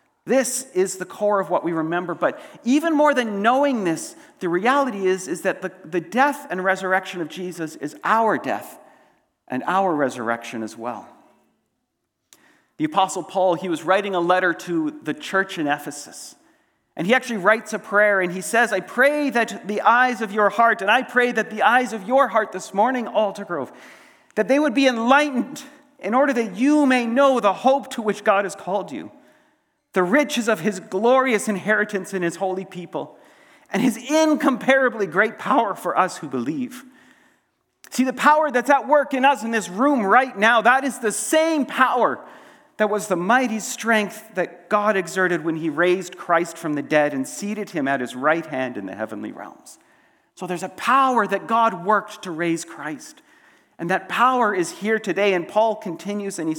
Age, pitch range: 40-59, 180-260 Hz